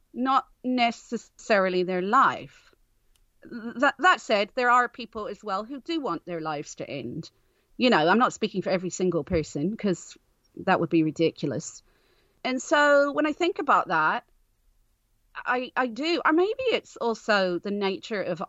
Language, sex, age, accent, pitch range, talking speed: English, female, 40-59, British, 175-245 Hz, 160 wpm